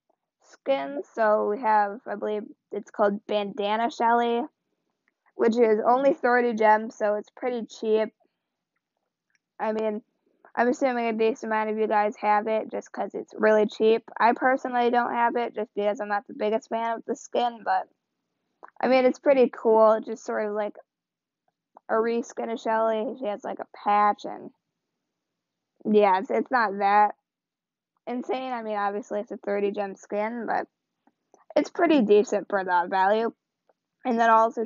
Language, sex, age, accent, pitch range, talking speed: English, female, 20-39, American, 210-245 Hz, 165 wpm